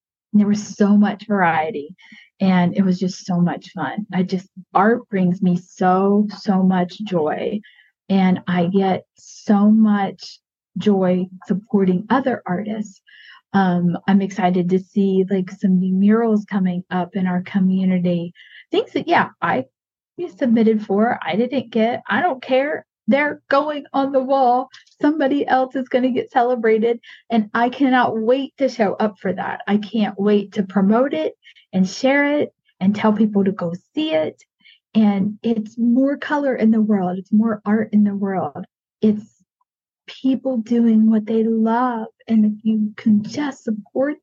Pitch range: 195-245 Hz